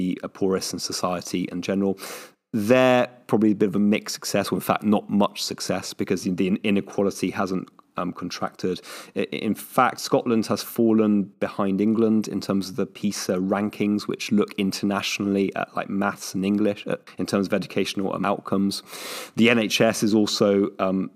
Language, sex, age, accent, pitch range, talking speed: English, male, 30-49, British, 95-105 Hz, 165 wpm